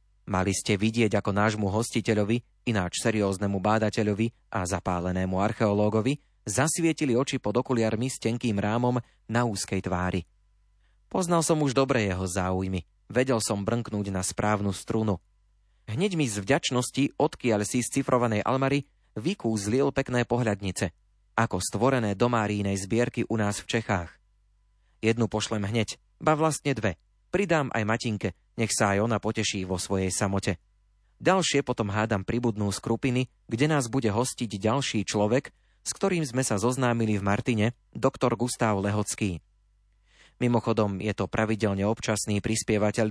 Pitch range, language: 100-120 Hz, Slovak